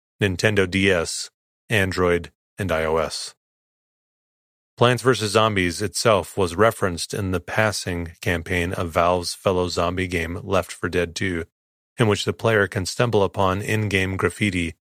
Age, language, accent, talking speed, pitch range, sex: 30-49, English, American, 135 wpm, 90-105 Hz, male